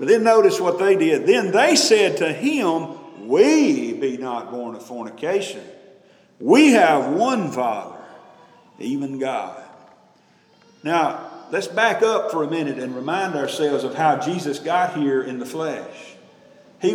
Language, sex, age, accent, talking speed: English, male, 50-69, American, 150 wpm